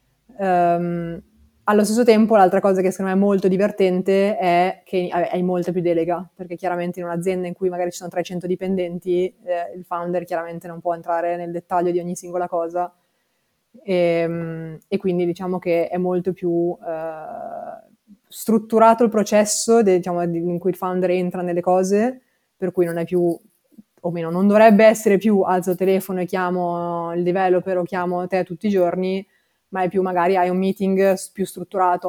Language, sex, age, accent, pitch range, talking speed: Italian, female, 20-39, native, 175-195 Hz, 180 wpm